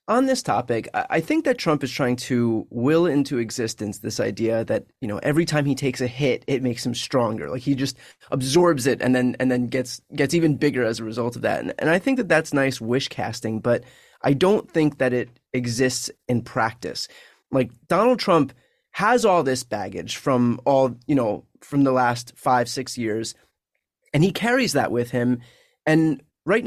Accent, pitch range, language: American, 125-160 Hz, English